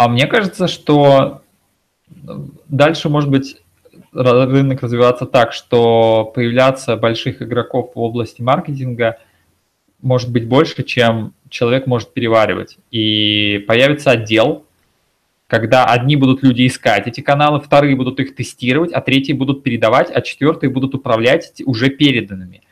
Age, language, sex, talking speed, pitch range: 20-39, Russian, male, 125 wpm, 120-145 Hz